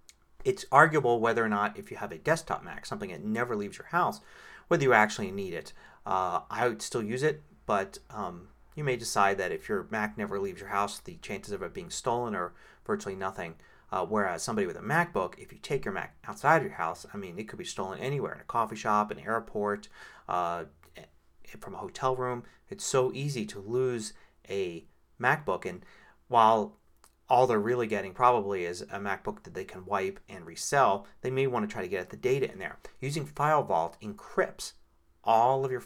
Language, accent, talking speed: English, American, 210 wpm